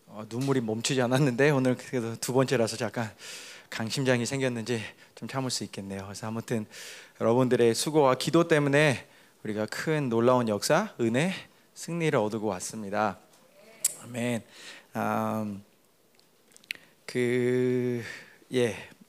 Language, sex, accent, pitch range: Korean, male, native, 115-145 Hz